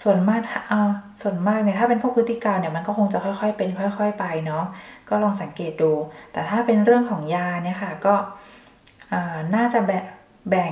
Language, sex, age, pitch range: Thai, female, 20-39, 175-210 Hz